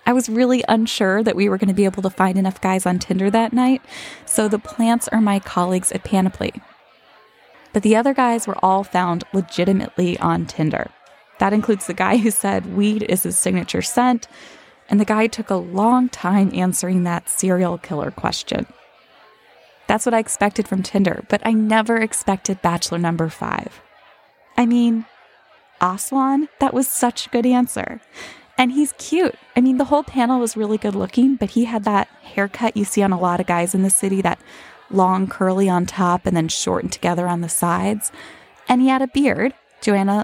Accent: American